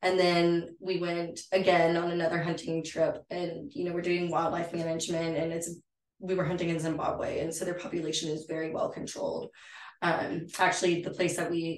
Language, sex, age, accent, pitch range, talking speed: English, female, 20-39, American, 160-180 Hz, 190 wpm